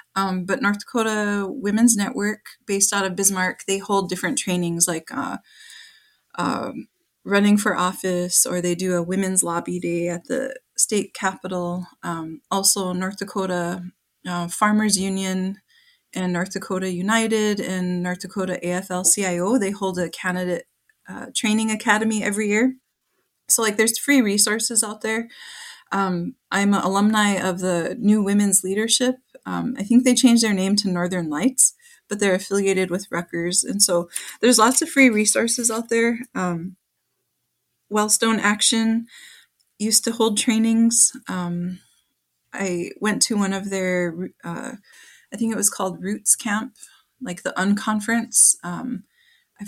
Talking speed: 145 wpm